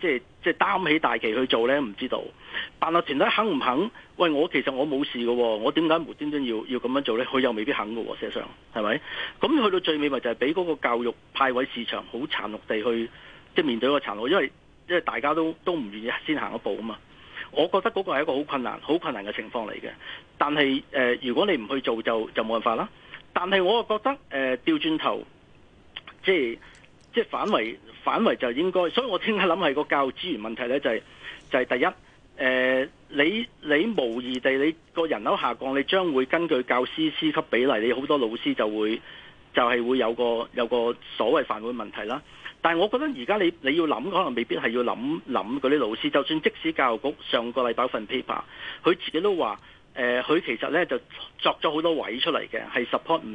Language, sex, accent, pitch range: Chinese, male, native, 120-185 Hz